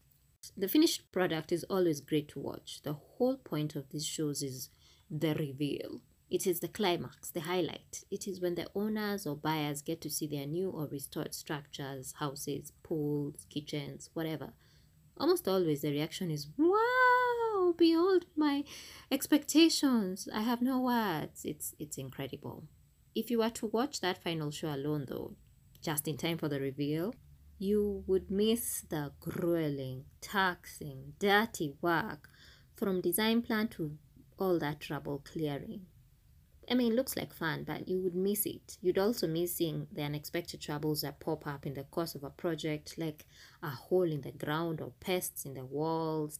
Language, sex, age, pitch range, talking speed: English, female, 20-39, 145-195 Hz, 165 wpm